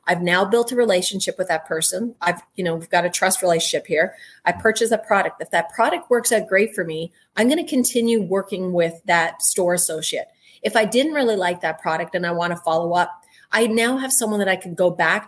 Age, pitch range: 30-49, 175-205 Hz